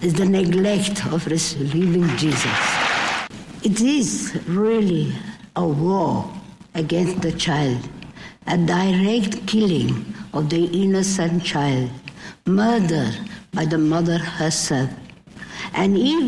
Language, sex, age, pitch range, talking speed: English, female, 60-79, 160-200 Hz, 105 wpm